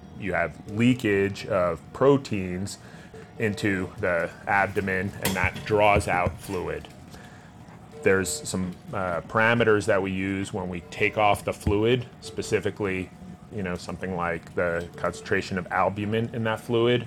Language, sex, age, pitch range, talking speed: English, male, 30-49, 90-105 Hz, 135 wpm